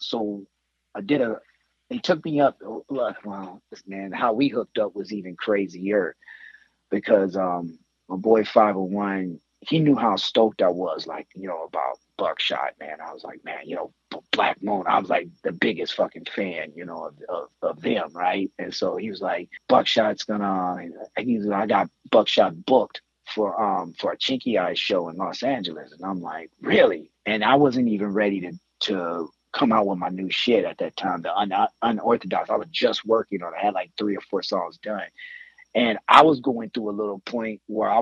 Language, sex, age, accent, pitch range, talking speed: English, male, 30-49, American, 100-115 Hz, 200 wpm